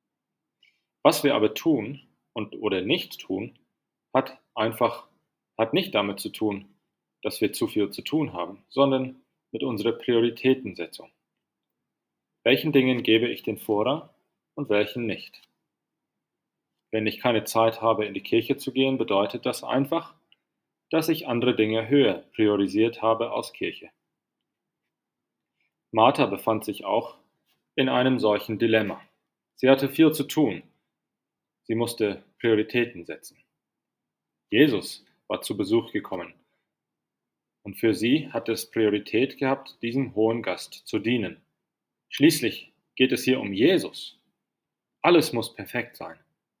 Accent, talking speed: German, 130 wpm